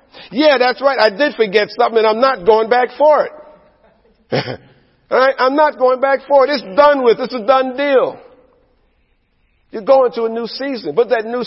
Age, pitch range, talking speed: 50-69, 180-230 Hz, 200 wpm